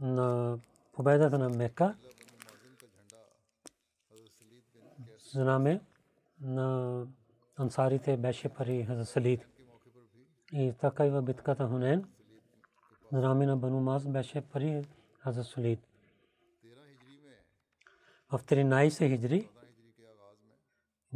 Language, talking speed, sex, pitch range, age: Bulgarian, 75 wpm, male, 120-140 Hz, 40-59